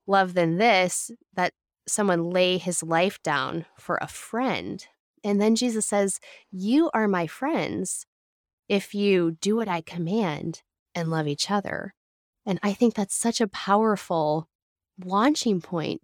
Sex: female